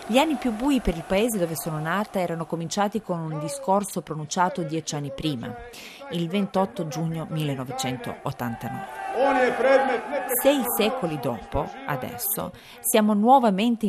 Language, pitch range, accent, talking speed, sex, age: Italian, 145-205 Hz, native, 125 wpm, female, 40-59